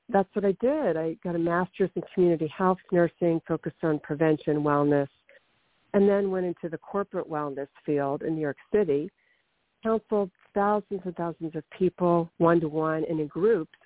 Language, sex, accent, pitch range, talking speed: English, female, American, 160-205 Hz, 175 wpm